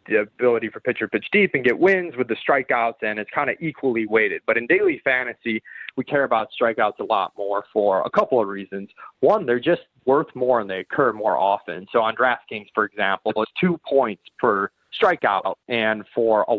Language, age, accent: English, 20-39, American